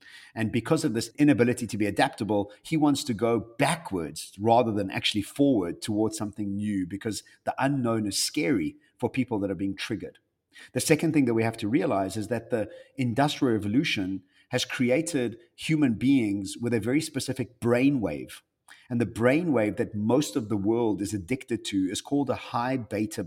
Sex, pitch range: male, 105-130 Hz